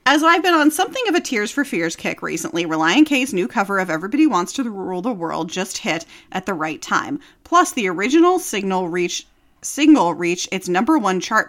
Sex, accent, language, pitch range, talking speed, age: female, American, English, 180-270 Hz, 200 wpm, 30-49